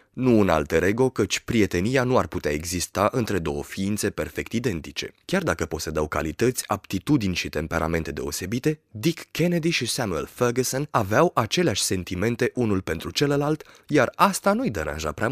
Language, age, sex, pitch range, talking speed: Romanian, 20-39, male, 95-150 Hz, 155 wpm